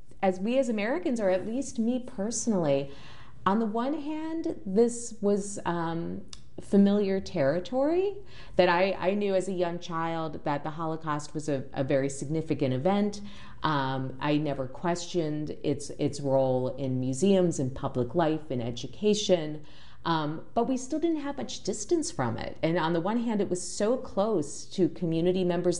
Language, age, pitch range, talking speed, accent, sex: English, 40-59, 140-190 Hz, 165 wpm, American, female